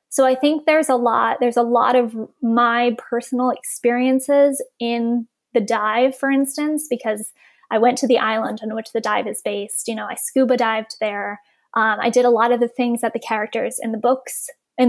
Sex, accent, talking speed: female, American, 205 wpm